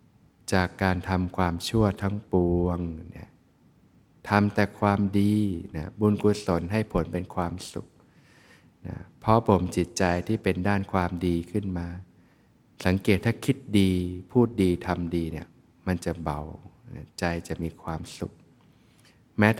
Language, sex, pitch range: Thai, male, 90-110 Hz